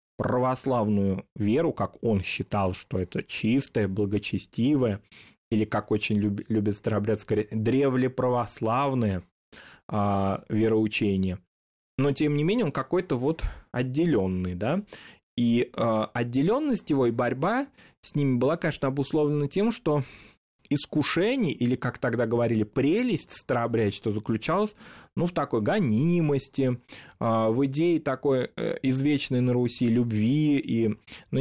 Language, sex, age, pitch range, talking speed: Russian, male, 20-39, 105-130 Hz, 120 wpm